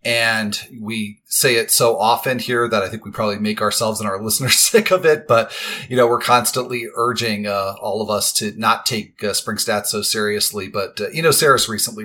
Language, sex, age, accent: English, male, 30-49, American